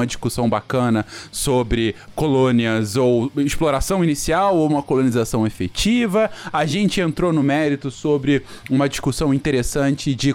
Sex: male